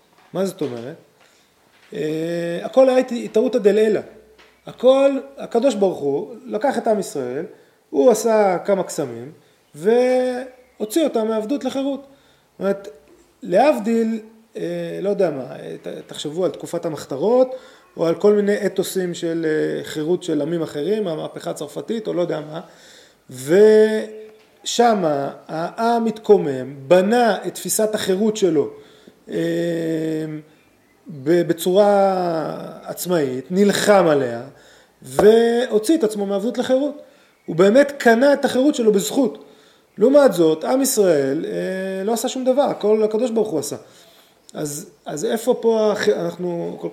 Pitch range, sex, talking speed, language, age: 175-250 Hz, male, 125 wpm, Hebrew, 30-49